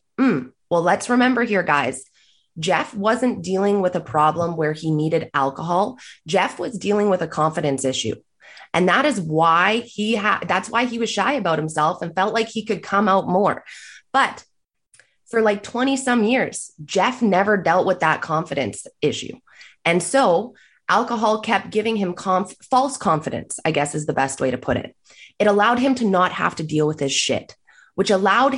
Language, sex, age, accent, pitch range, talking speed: English, female, 20-39, American, 160-220 Hz, 180 wpm